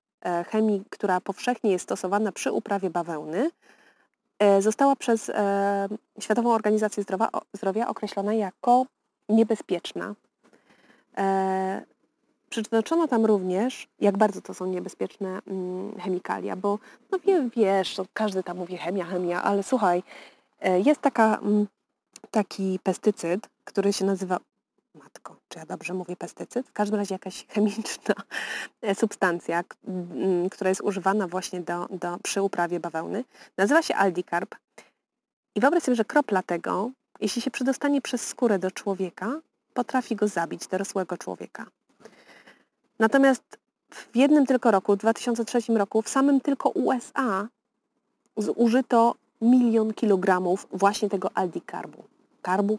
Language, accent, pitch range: Polish, native, 185-230 Hz